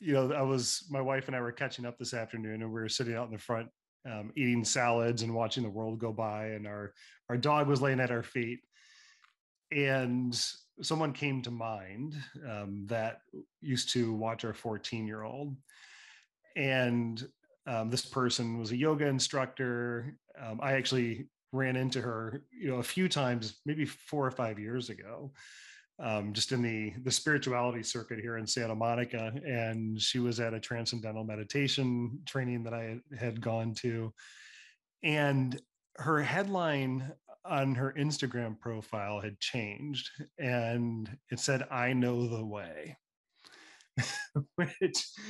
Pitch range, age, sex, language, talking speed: 115-140 Hz, 30-49, male, English, 155 wpm